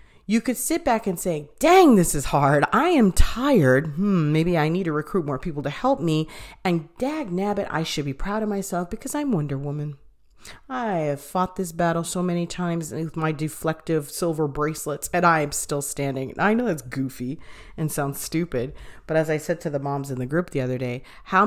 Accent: American